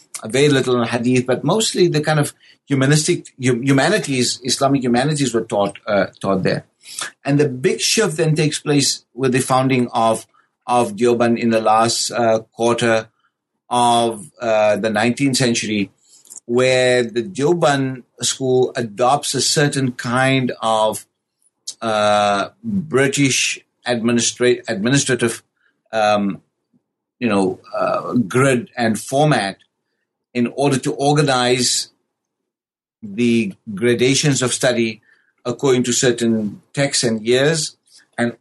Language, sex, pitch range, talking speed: English, male, 115-135 Hz, 120 wpm